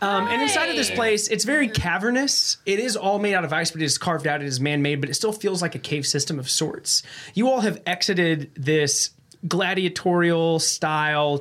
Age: 20-39